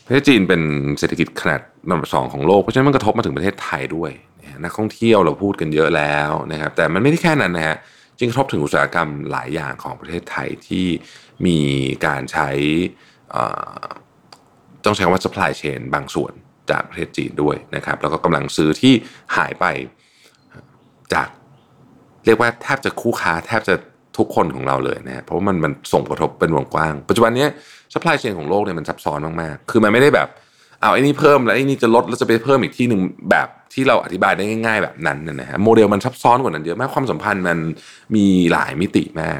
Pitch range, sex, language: 80-115 Hz, male, Thai